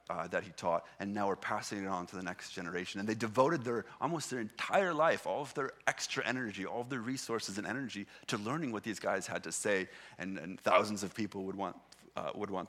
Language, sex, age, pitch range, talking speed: English, male, 30-49, 100-125 Hz, 240 wpm